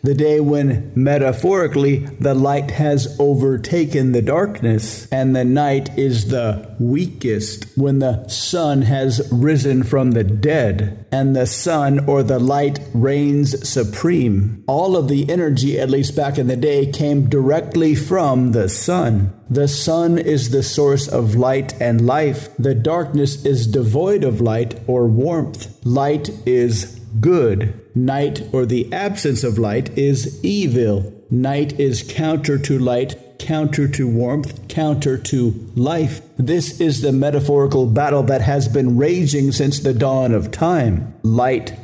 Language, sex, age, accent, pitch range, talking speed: English, male, 50-69, American, 120-145 Hz, 145 wpm